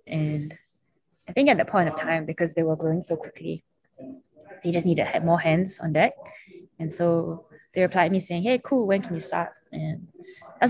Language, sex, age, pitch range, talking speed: English, female, 20-39, 160-180 Hz, 195 wpm